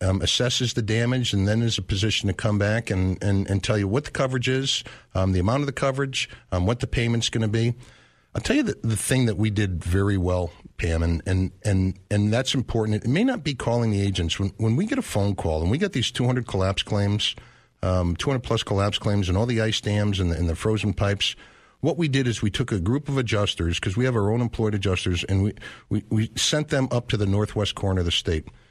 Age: 50-69